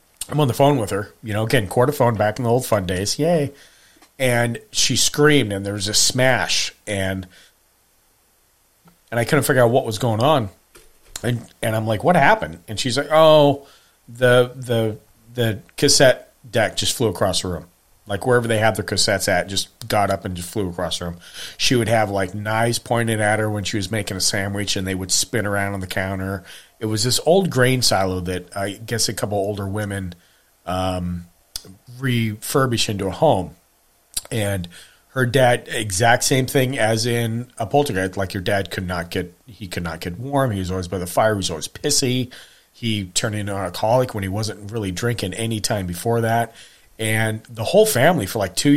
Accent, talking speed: American, 200 wpm